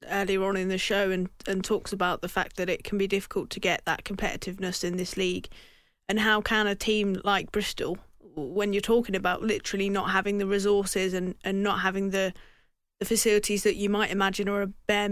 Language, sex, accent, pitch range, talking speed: English, female, British, 190-210 Hz, 210 wpm